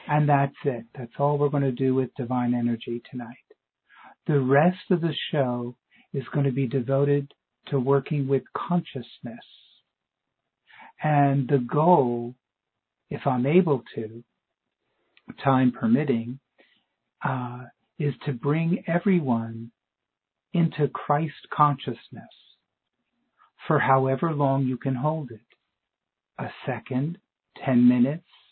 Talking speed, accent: 115 wpm, American